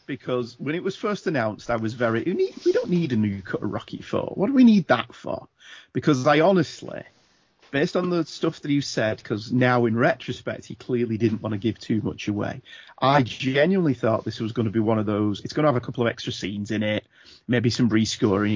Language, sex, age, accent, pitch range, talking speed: English, male, 30-49, British, 110-135 Hz, 235 wpm